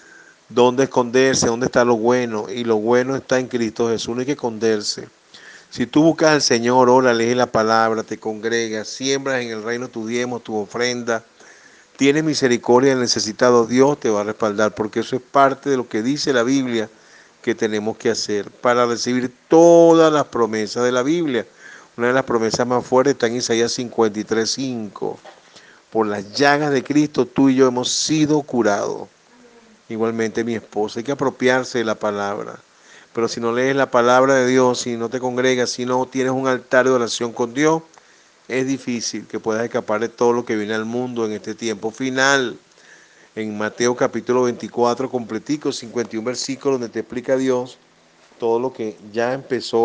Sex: male